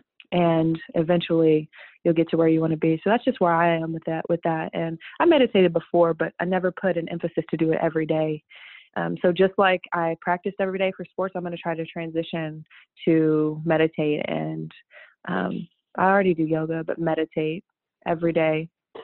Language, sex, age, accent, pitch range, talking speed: English, female, 20-39, American, 165-190 Hz, 200 wpm